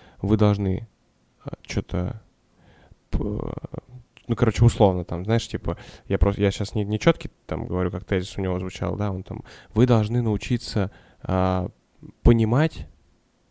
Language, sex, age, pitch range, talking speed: Russian, male, 10-29, 95-120 Hz, 140 wpm